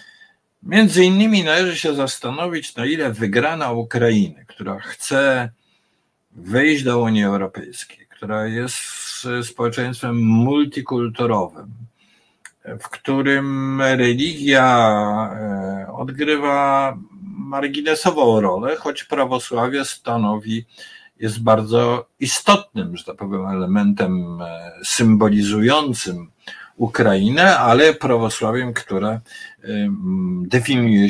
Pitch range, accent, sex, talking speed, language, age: 105-140 Hz, native, male, 80 wpm, Polish, 50-69